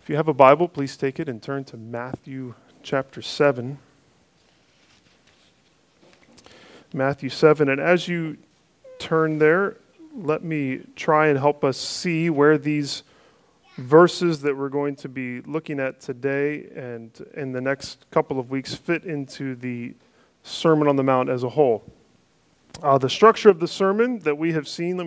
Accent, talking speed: American, 160 wpm